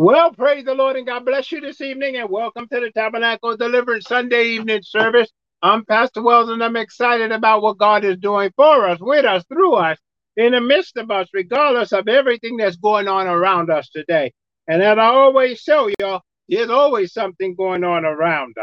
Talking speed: 200 wpm